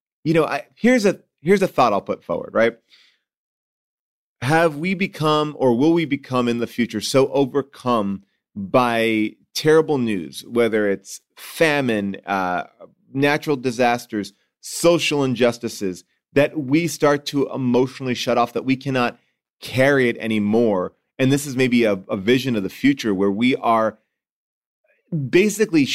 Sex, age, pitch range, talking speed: male, 30-49, 115-140 Hz, 145 wpm